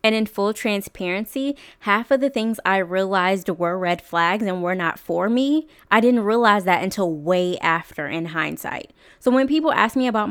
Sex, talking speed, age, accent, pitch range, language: female, 190 wpm, 20-39, American, 175-220 Hz, English